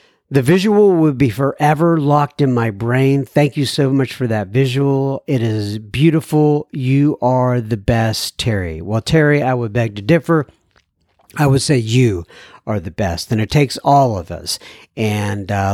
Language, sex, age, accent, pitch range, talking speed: English, male, 60-79, American, 115-165 Hz, 175 wpm